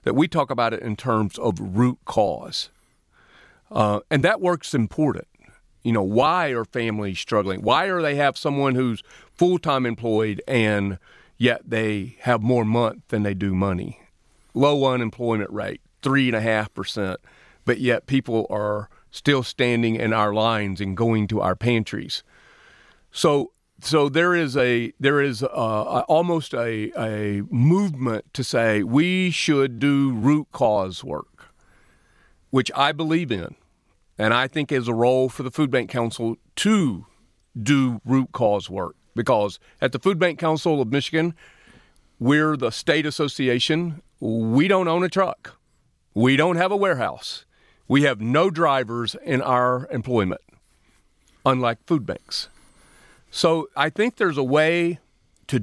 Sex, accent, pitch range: male, American, 110-155 Hz